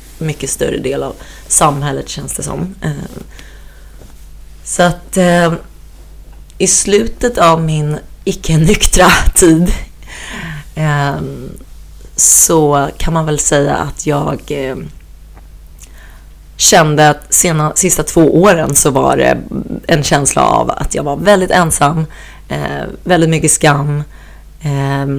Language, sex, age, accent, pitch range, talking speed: Swedish, female, 30-49, native, 135-165 Hz, 105 wpm